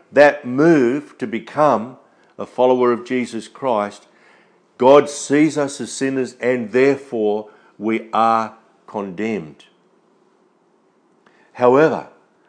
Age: 50-69